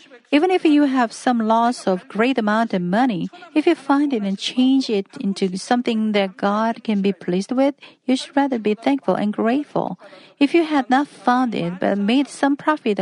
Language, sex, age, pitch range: Korean, female, 50-69, 205-275 Hz